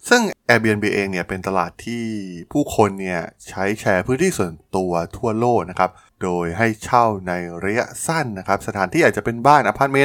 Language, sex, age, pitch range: Thai, male, 20-39, 90-120 Hz